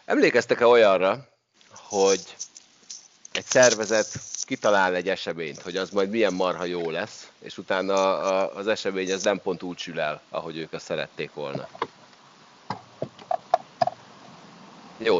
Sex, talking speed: male, 120 wpm